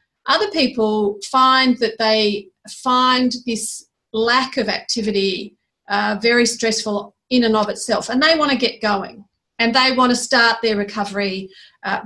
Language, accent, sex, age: English, Australian, female, 40-59